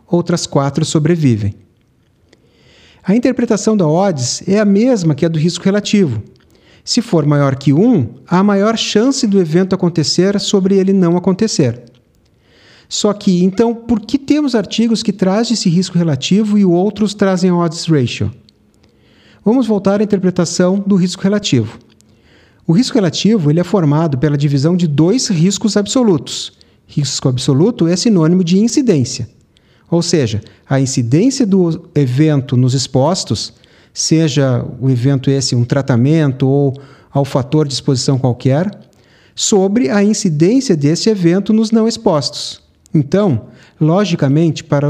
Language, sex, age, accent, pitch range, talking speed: Portuguese, male, 40-59, Brazilian, 140-200 Hz, 135 wpm